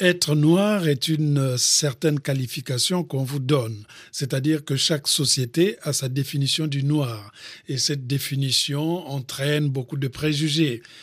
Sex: male